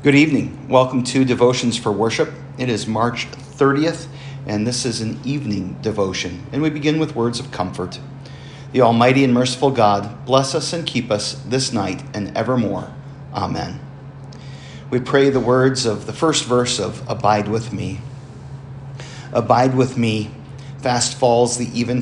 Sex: male